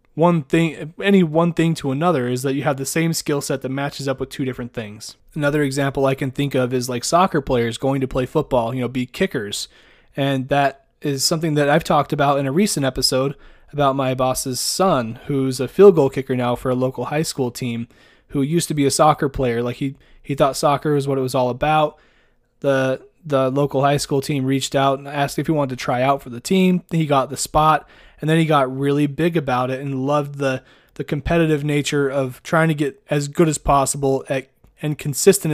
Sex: male